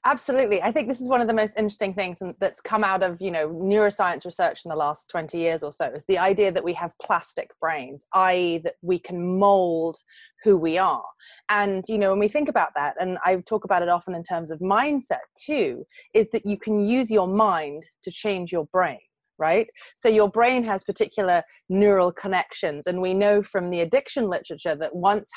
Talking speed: 210 wpm